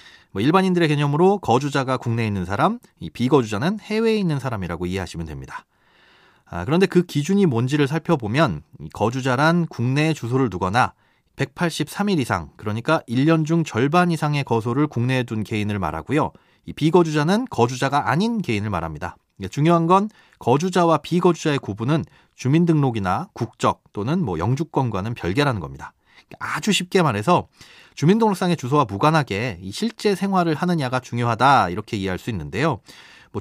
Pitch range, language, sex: 110-170 Hz, Korean, male